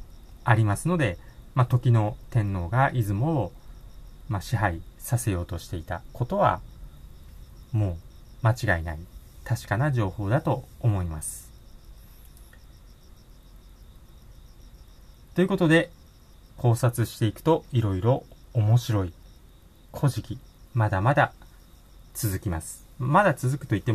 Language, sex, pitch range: Japanese, male, 90-120 Hz